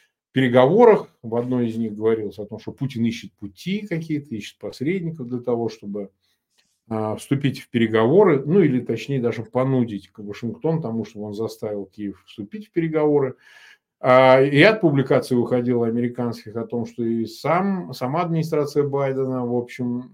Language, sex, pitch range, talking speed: Russian, male, 115-150 Hz, 160 wpm